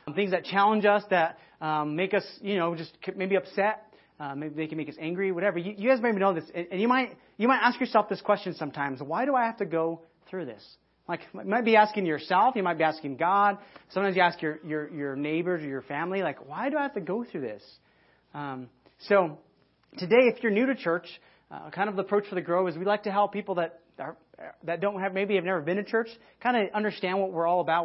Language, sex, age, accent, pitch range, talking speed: English, male, 30-49, American, 165-205 Hz, 250 wpm